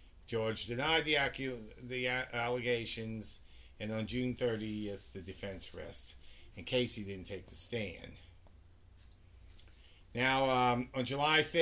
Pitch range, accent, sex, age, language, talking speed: 95-125 Hz, American, male, 50-69, English, 120 wpm